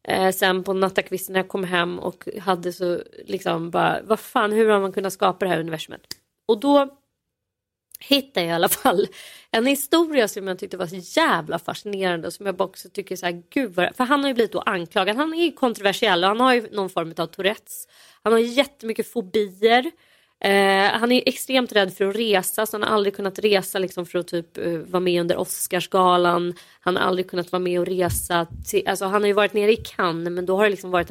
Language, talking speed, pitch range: Swedish, 220 wpm, 180-230 Hz